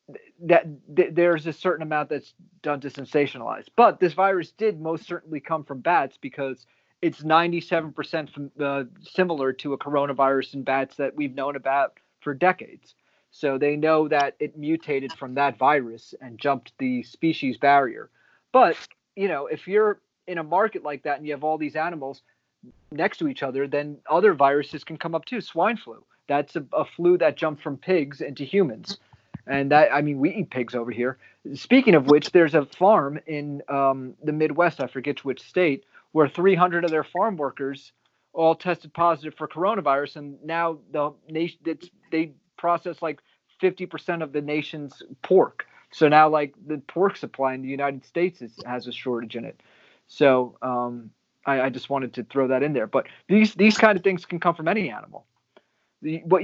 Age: 30-49